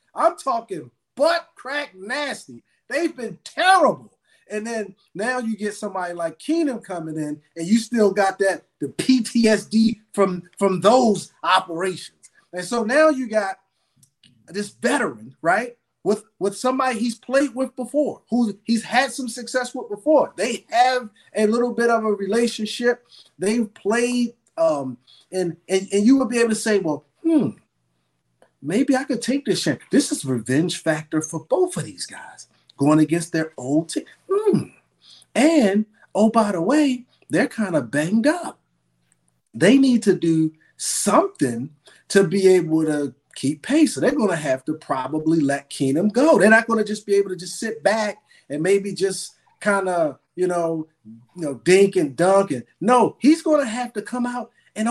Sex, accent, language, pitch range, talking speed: male, American, English, 165-245 Hz, 175 wpm